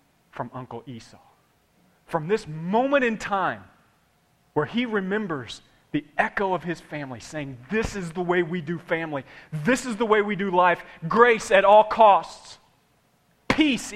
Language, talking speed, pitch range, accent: English, 155 wpm, 145-205 Hz, American